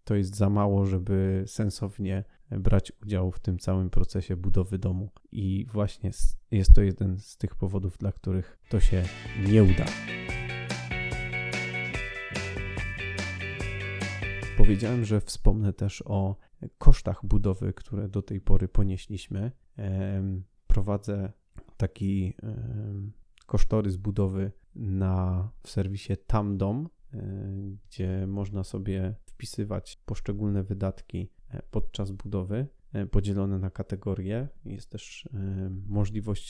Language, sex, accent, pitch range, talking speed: Polish, male, native, 95-105 Hz, 100 wpm